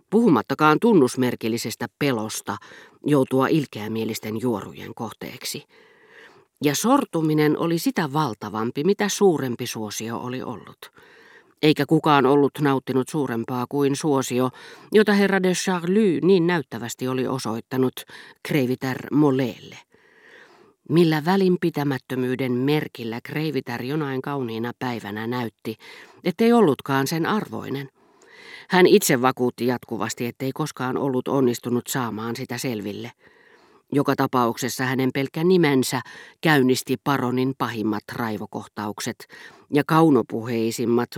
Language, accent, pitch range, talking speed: Finnish, native, 120-155 Hz, 100 wpm